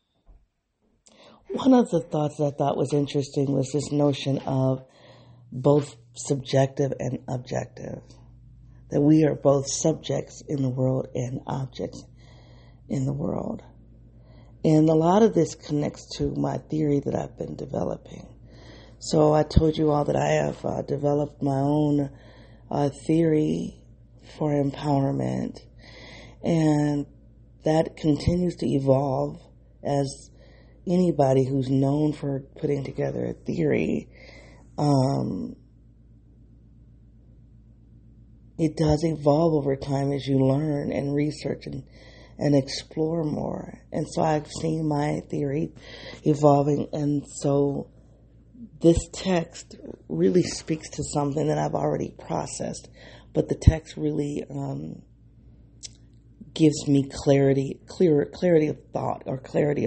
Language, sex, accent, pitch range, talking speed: English, female, American, 130-150 Hz, 120 wpm